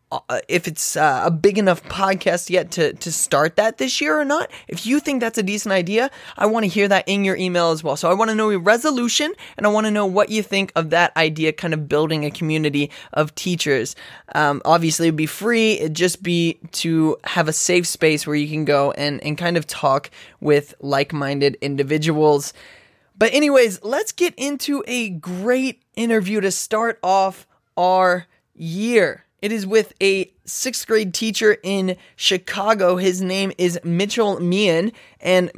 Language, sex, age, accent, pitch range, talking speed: English, male, 20-39, American, 160-205 Hz, 185 wpm